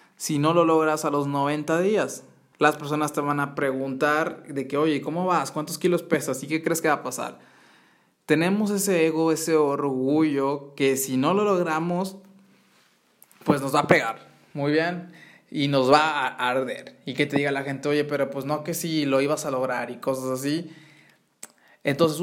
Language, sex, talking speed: Spanish, male, 190 wpm